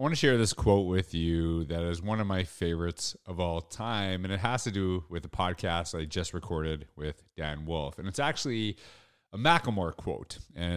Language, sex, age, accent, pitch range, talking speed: English, male, 30-49, American, 85-115 Hz, 210 wpm